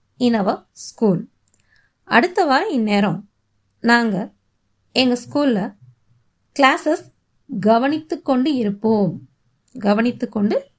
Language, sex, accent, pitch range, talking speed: Tamil, female, native, 190-285 Hz, 85 wpm